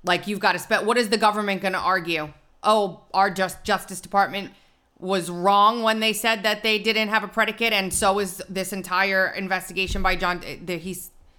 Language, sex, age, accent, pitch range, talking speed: English, female, 30-49, American, 175-215 Hz, 195 wpm